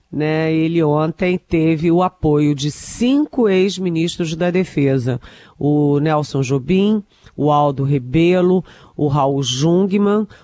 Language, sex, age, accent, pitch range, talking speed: Portuguese, female, 40-59, Brazilian, 160-210 Hz, 115 wpm